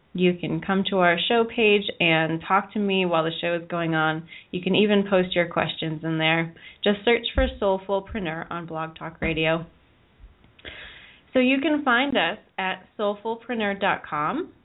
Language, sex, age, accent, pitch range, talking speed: English, female, 20-39, American, 170-215 Hz, 165 wpm